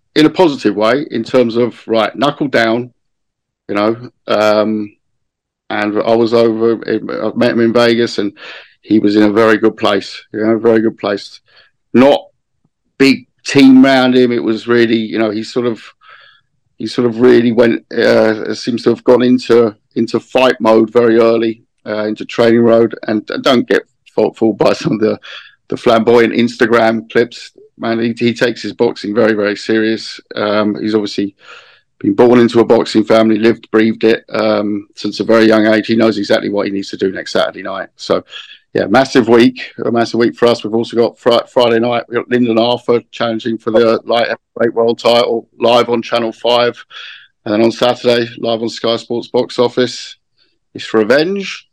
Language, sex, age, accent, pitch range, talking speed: English, male, 50-69, British, 110-120 Hz, 190 wpm